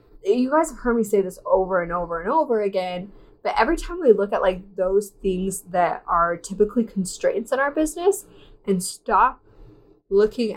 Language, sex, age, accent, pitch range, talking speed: English, female, 10-29, American, 185-260 Hz, 180 wpm